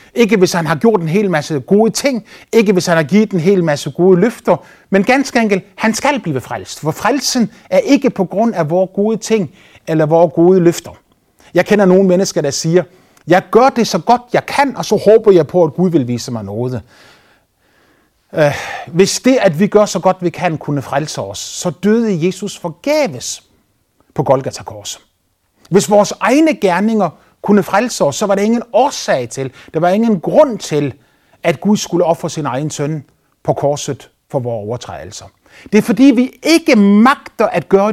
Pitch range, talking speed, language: 140-210 Hz, 195 wpm, Danish